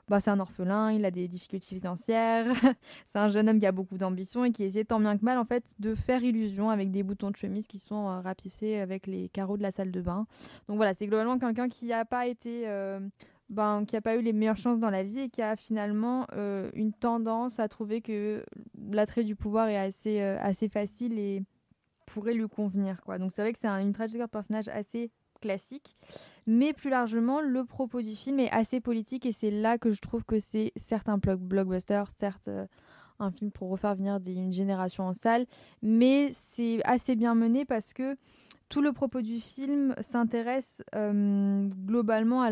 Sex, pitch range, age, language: female, 200-235 Hz, 20-39, French